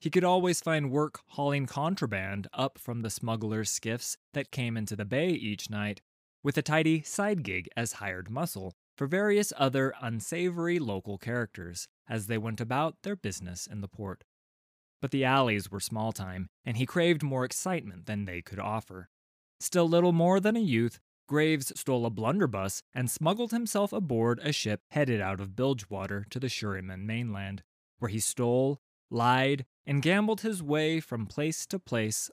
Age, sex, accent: 20-39, male, American